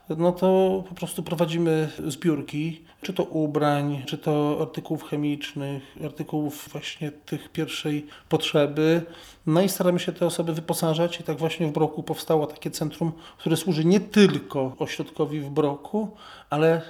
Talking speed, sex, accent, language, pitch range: 145 wpm, male, native, Polish, 145-165 Hz